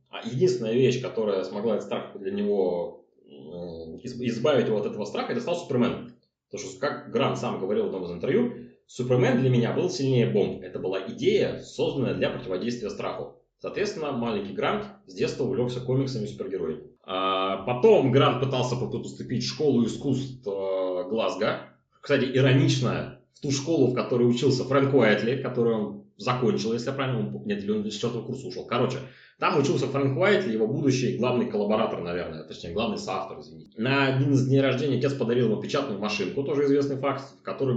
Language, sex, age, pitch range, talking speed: Russian, male, 30-49, 115-135 Hz, 165 wpm